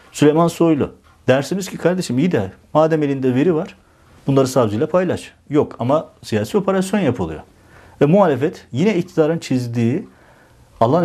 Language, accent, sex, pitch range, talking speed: Turkish, native, male, 105-140 Hz, 135 wpm